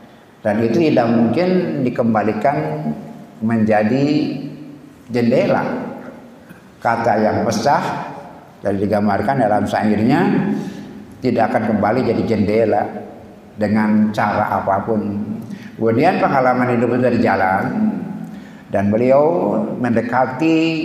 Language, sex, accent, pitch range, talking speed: Indonesian, male, native, 105-130 Hz, 90 wpm